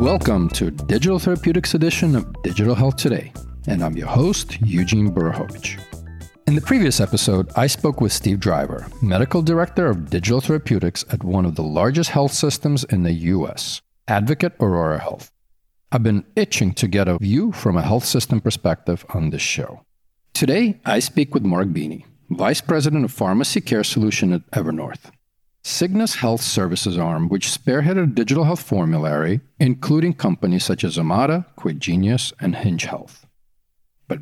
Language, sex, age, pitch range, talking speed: English, male, 40-59, 95-145 Hz, 160 wpm